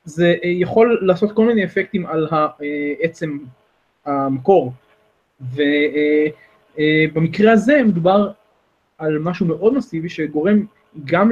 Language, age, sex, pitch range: Hebrew, 20-39, male, 150-195 Hz